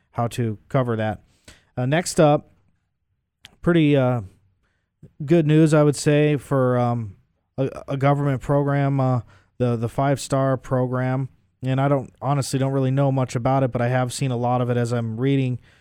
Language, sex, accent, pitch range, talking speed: English, male, American, 115-135 Hz, 180 wpm